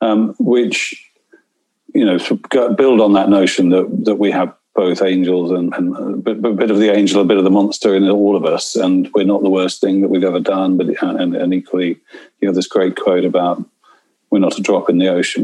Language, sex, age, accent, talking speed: English, male, 50-69, British, 235 wpm